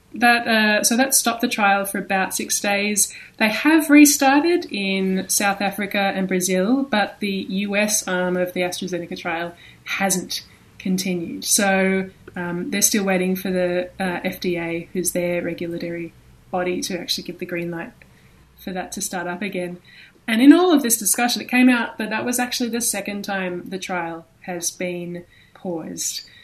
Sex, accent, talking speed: female, Australian, 170 wpm